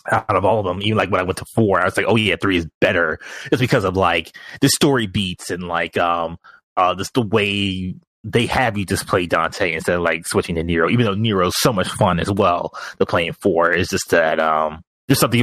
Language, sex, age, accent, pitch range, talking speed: English, male, 30-49, American, 90-120 Hz, 245 wpm